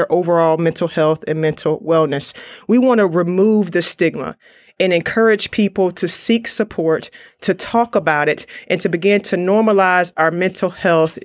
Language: English